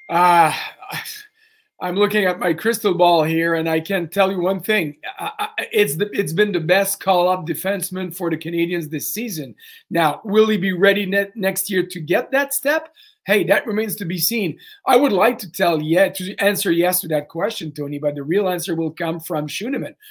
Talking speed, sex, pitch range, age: 210 wpm, male, 170-215 Hz, 40-59